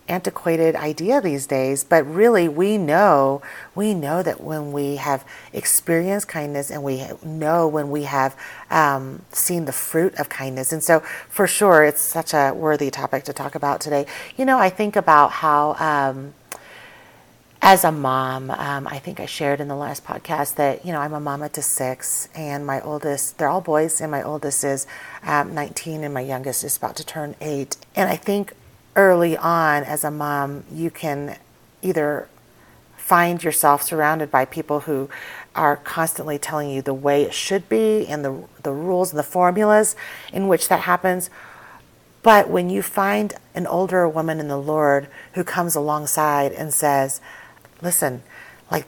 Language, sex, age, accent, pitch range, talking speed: English, female, 40-59, American, 140-170 Hz, 175 wpm